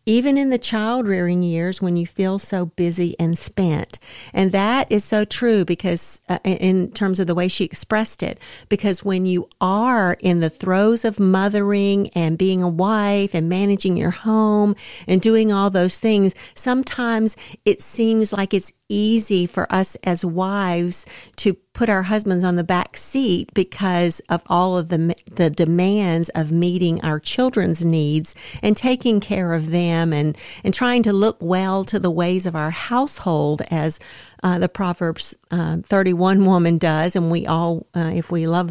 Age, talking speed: 50-69, 175 wpm